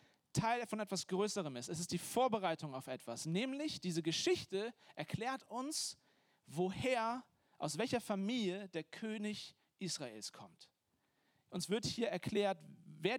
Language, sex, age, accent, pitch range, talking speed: German, male, 40-59, German, 150-195 Hz, 130 wpm